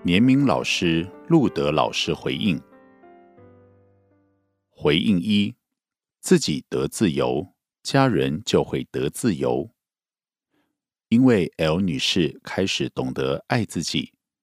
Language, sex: Korean, male